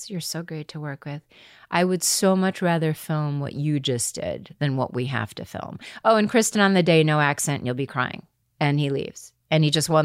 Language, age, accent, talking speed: English, 30-49, American, 240 wpm